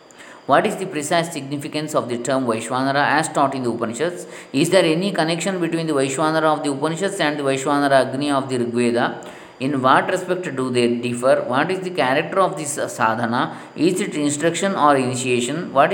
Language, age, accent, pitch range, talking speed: English, 20-39, Indian, 130-165 Hz, 190 wpm